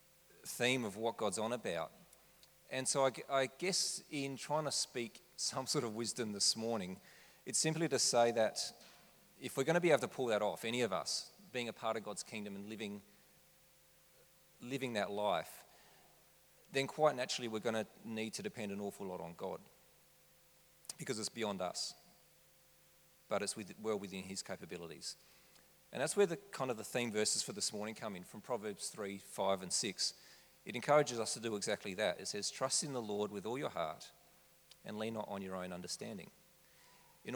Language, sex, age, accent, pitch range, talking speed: English, male, 40-59, Australian, 100-130 Hz, 195 wpm